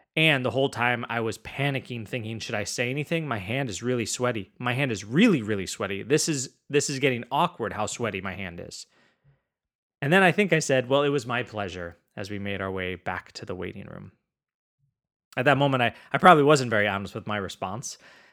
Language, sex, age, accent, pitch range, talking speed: English, male, 20-39, American, 110-140 Hz, 220 wpm